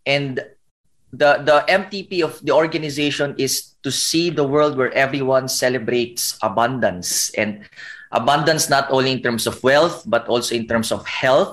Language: Filipino